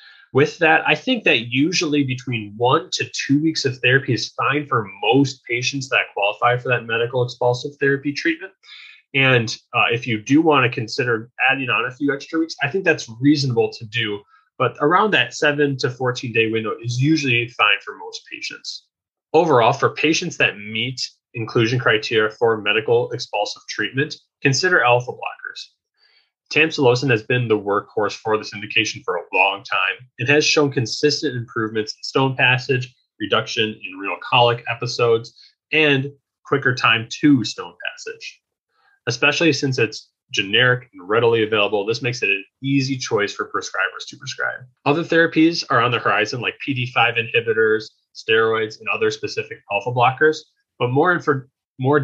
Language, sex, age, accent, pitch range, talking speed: English, male, 20-39, American, 115-155 Hz, 160 wpm